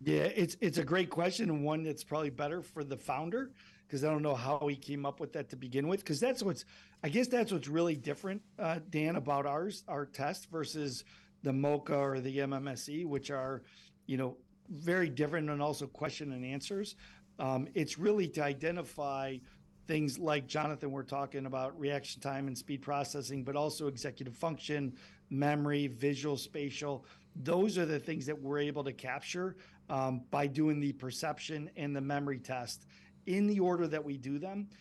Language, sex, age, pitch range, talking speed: English, male, 50-69, 140-170 Hz, 185 wpm